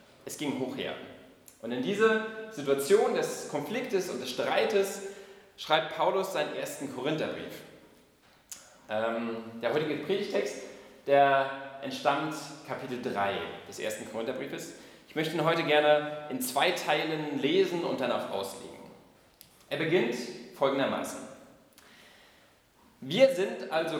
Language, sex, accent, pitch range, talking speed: German, male, German, 140-195 Hz, 120 wpm